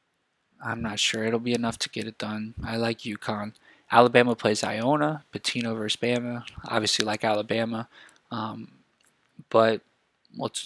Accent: American